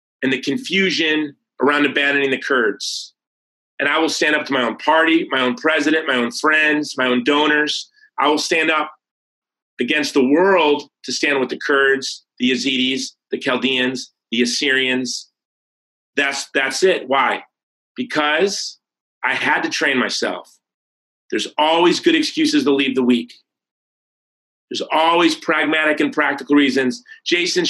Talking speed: 145 wpm